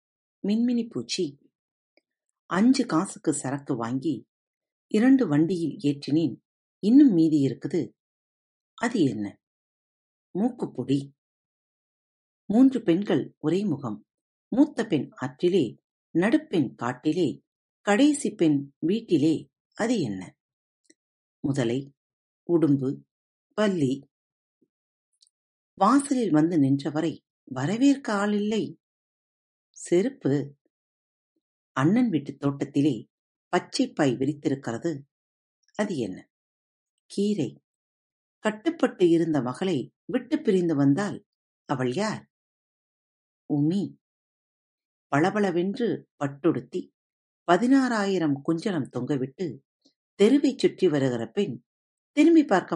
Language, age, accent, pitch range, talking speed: Tamil, 50-69, native, 140-210 Hz, 70 wpm